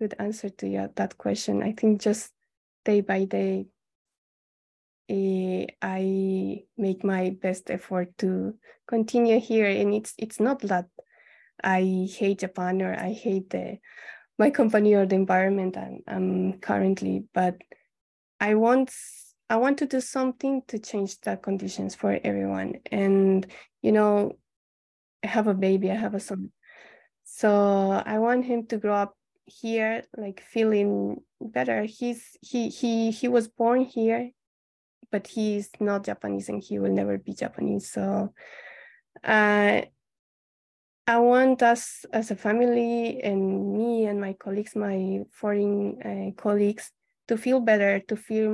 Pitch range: 190-225 Hz